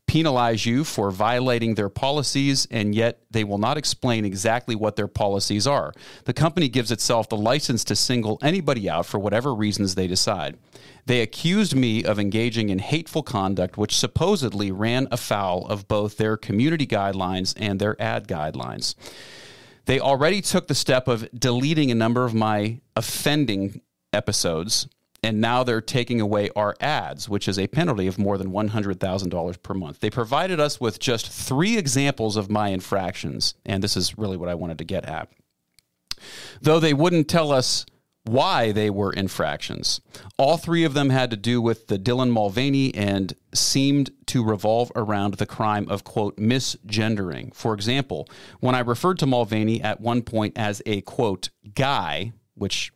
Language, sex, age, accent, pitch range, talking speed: English, male, 40-59, American, 100-130 Hz, 170 wpm